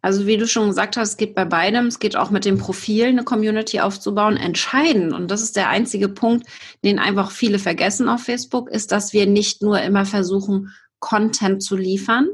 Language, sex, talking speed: German, female, 205 wpm